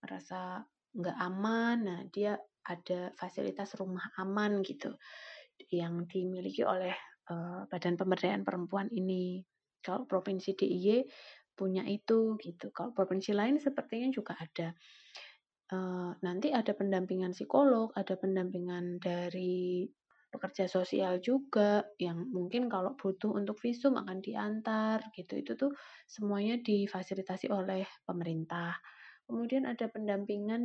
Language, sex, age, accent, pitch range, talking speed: Indonesian, female, 20-39, native, 185-220 Hz, 115 wpm